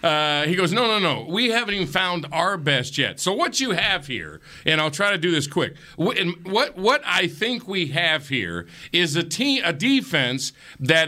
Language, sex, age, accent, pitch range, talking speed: English, male, 50-69, American, 140-200 Hz, 205 wpm